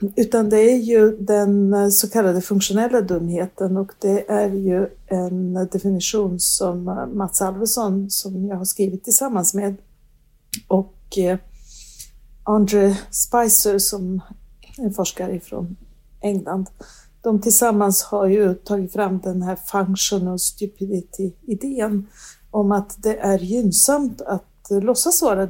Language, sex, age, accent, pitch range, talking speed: Swedish, female, 60-79, native, 185-210 Hz, 120 wpm